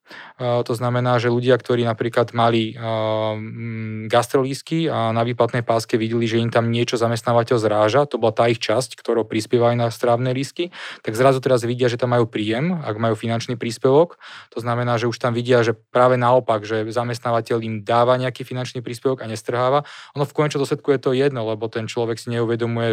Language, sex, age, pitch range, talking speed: Slovak, male, 20-39, 115-125 Hz, 185 wpm